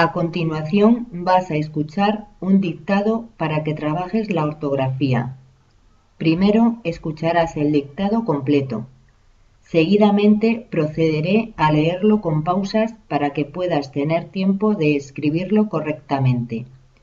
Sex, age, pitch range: female, 40-59, 135-195 Hz